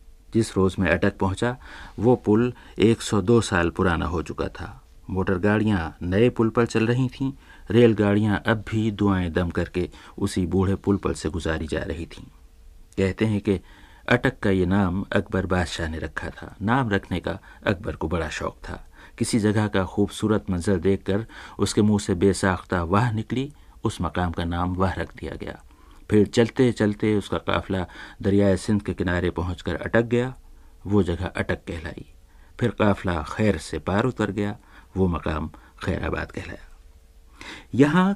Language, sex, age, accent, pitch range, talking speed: Hindi, male, 50-69, native, 90-110 Hz, 165 wpm